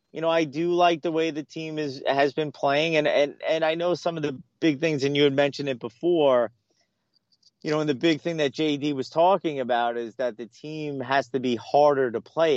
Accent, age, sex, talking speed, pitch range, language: American, 30-49, male, 240 wpm, 125-165 Hz, English